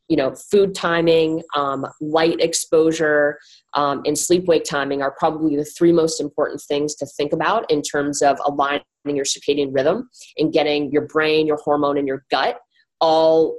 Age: 30-49